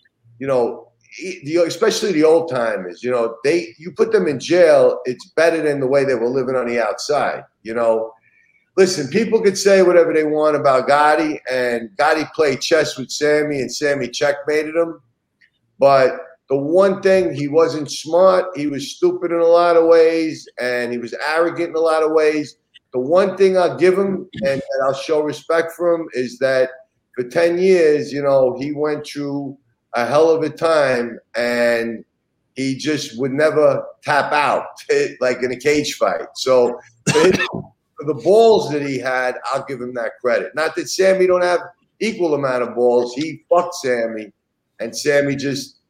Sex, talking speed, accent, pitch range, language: male, 180 wpm, American, 125-170 Hz, English